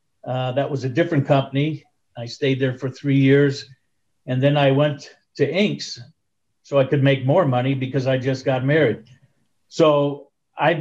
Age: 50-69